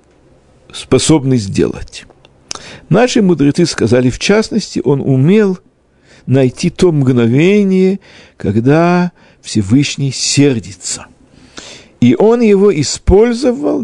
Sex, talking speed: male, 80 wpm